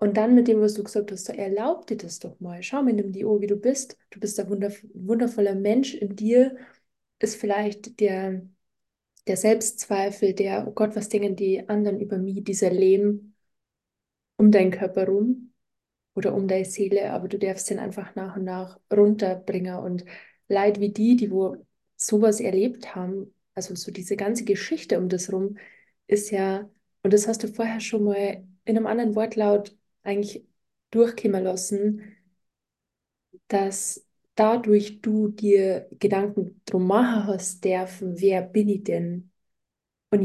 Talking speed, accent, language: 160 wpm, German, German